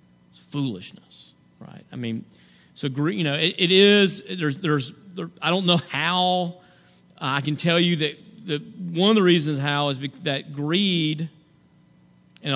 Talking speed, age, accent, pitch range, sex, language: 155 wpm, 40-59, American, 130-170 Hz, male, English